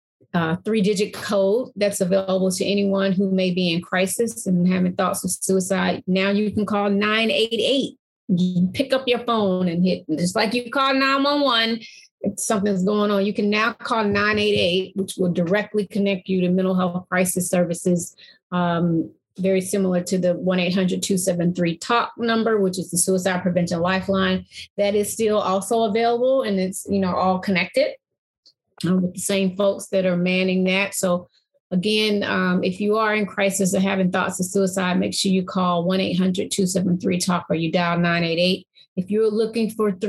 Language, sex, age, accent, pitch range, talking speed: English, female, 30-49, American, 180-210 Hz, 170 wpm